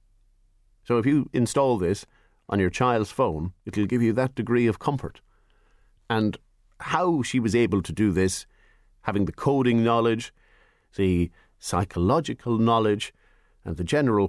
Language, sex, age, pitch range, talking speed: English, male, 50-69, 95-115 Hz, 145 wpm